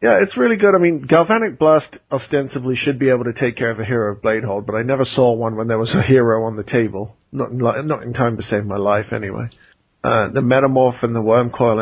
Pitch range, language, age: 110-135 Hz, English, 40-59